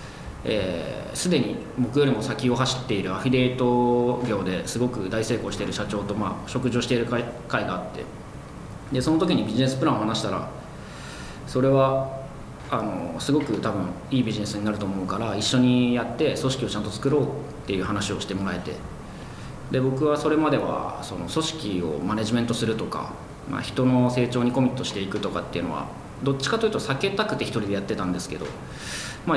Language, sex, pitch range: Japanese, male, 105-145 Hz